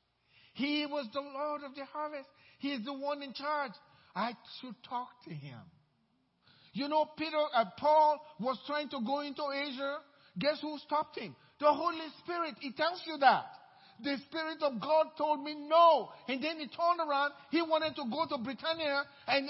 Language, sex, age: English, male, 50-69